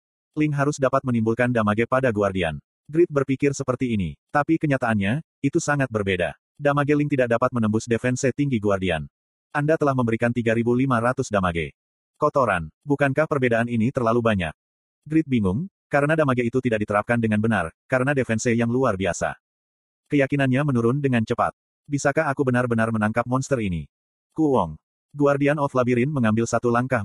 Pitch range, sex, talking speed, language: 110-140 Hz, male, 150 wpm, Indonesian